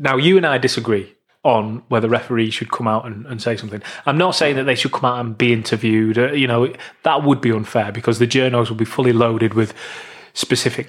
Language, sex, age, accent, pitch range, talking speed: English, male, 20-39, British, 115-135 Hz, 230 wpm